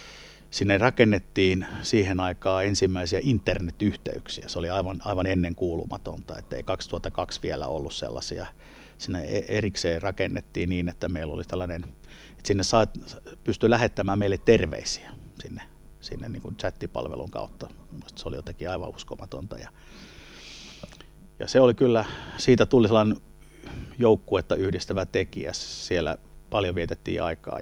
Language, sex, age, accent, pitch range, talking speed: Finnish, male, 50-69, native, 90-110 Hz, 125 wpm